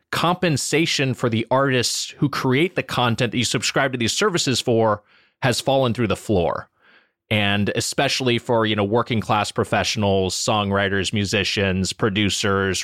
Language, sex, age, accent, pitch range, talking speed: English, male, 30-49, American, 115-165 Hz, 145 wpm